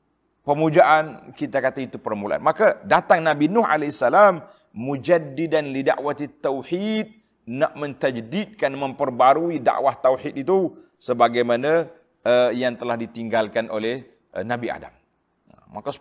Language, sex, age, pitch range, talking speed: Malay, male, 40-59, 125-155 Hz, 110 wpm